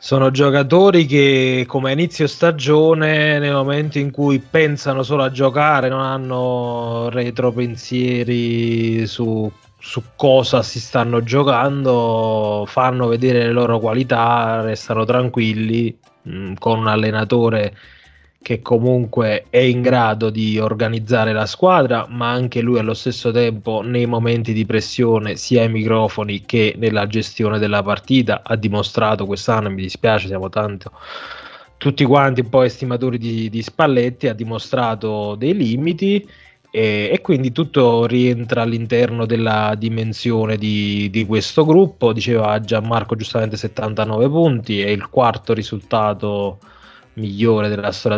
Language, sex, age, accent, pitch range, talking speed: Italian, male, 20-39, native, 105-125 Hz, 130 wpm